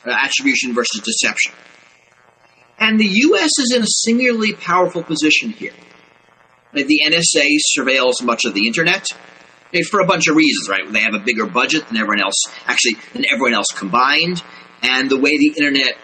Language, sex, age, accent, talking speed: English, male, 30-49, American, 180 wpm